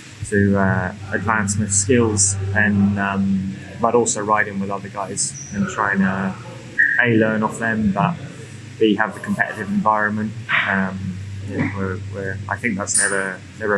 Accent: British